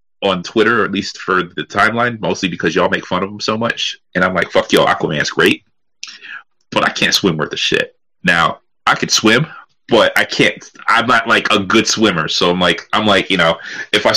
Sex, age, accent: male, 30-49, American